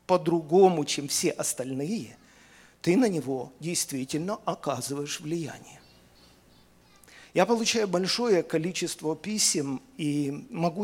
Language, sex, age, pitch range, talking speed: Russian, male, 50-69, 145-185 Hz, 95 wpm